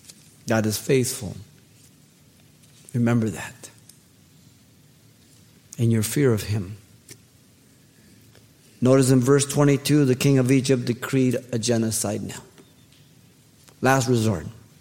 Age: 50-69